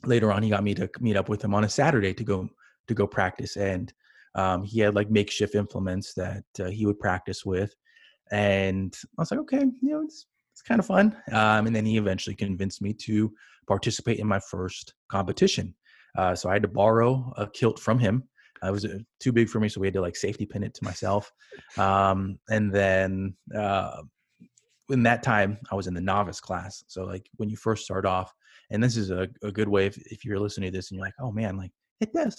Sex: male